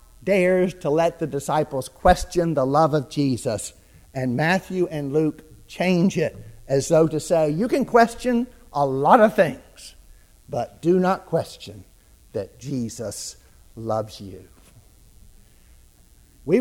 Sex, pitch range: male, 120-185 Hz